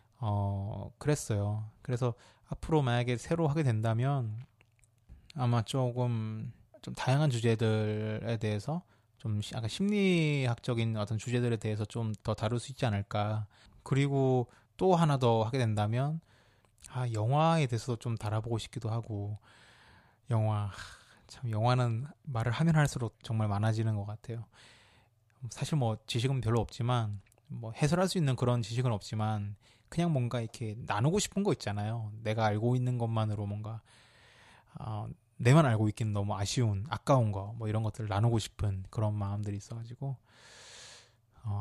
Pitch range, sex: 110-130 Hz, male